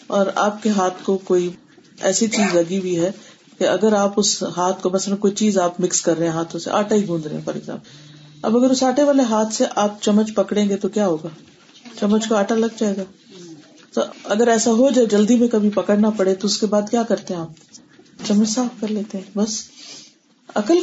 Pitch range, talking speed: 185-250 Hz, 230 wpm